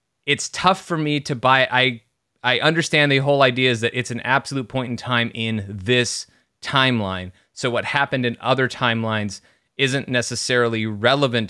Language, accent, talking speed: English, American, 165 wpm